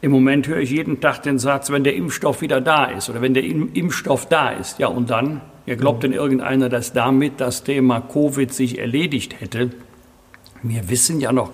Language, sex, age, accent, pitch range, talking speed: German, male, 60-79, German, 130-170 Hz, 200 wpm